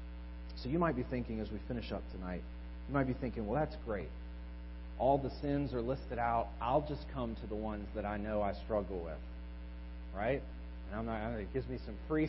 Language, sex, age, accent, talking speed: English, male, 30-49, American, 205 wpm